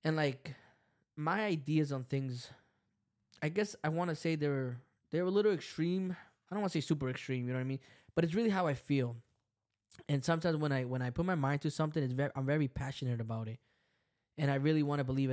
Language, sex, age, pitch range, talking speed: English, male, 10-29, 125-155 Hz, 230 wpm